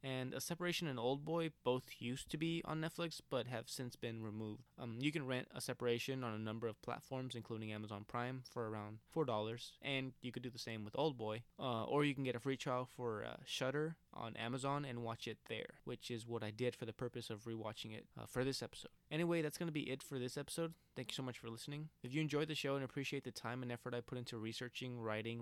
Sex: male